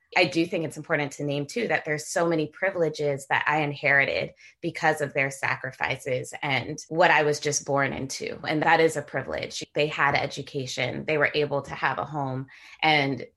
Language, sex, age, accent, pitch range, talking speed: English, female, 20-39, American, 140-175 Hz, 195 wpm